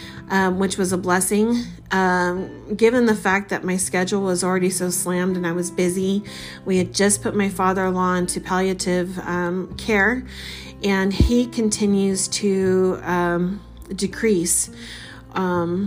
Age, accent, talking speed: 40-59, American, 140 wpm